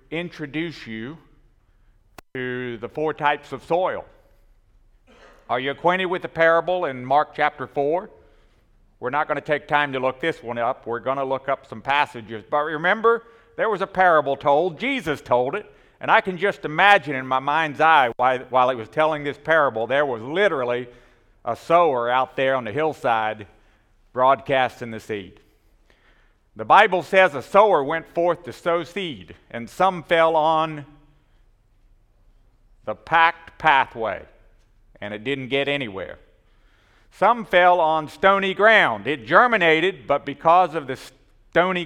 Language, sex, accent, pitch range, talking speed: English, male, American, 120-165 Hz, 155 wpm